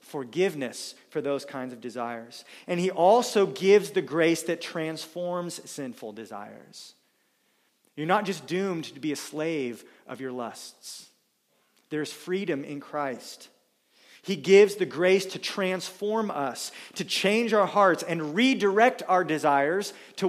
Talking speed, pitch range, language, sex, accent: 140 wpm, 140-185 Hz, English, male, American